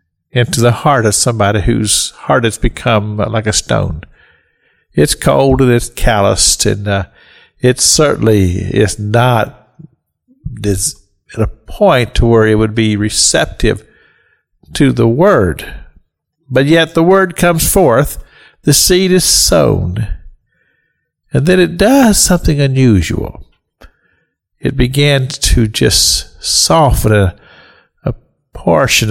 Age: 50-69